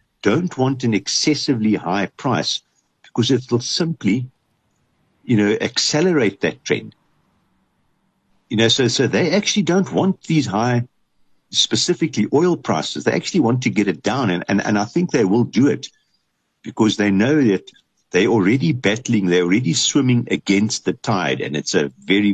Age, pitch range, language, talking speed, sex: 60-79, 100-135 Hz, English, 165 wpm, male